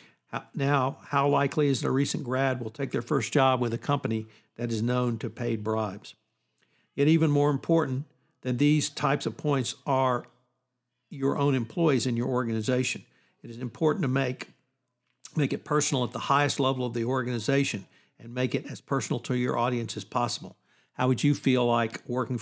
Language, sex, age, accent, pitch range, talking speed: English, male, 60-79, American, 120-140 Hz, 185 wpm